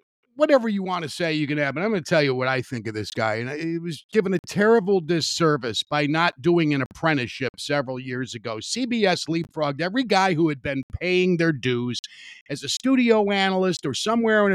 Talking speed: 215 wpm